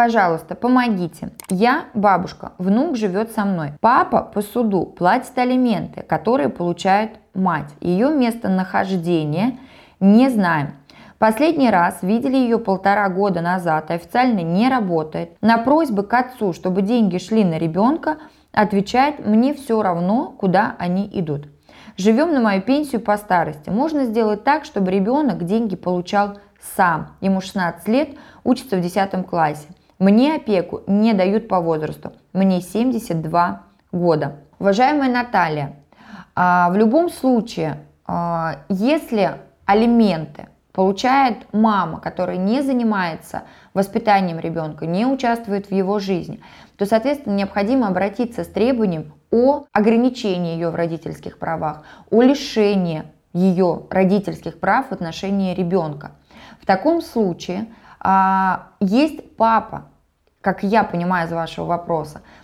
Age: 20-39